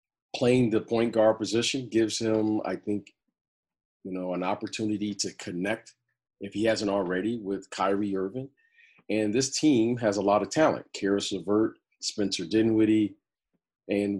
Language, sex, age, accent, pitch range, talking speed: English, male, 40-59, American, 105-135 Hz, 150 wpm